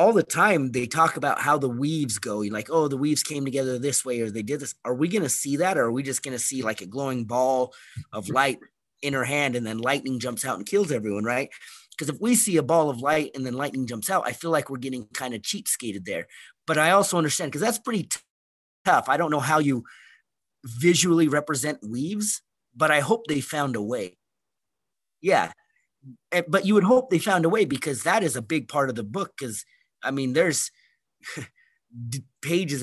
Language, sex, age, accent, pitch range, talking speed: English, male, 30-49, American, 125-155 Hz, 225 wpm